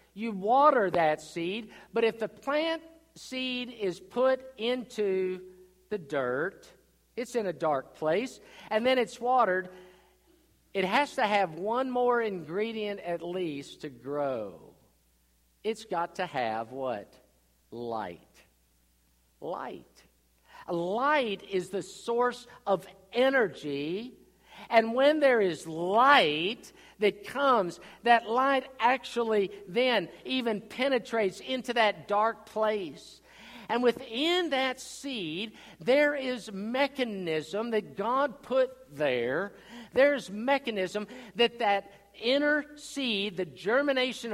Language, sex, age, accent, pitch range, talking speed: English, male, 50-69, American, 185-255 Hz, 110 wpm